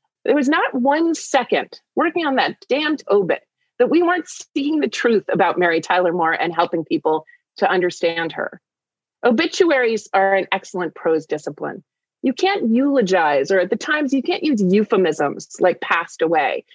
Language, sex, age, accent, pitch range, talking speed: English, female, 30-49, American, 195-290 Hz, 165 wpm